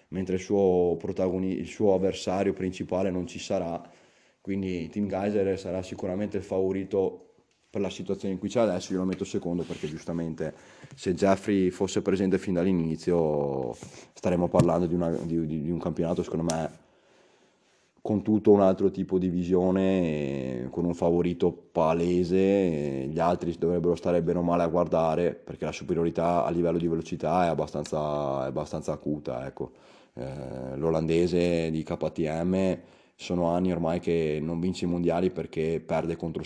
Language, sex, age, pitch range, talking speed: Italian, male, 20-39, 85-95 Hz, 155 wpm